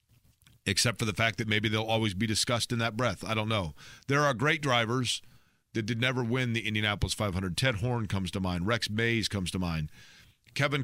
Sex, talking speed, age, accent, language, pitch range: male, 210 wpm, 40-59, American, English, 110-140 Hz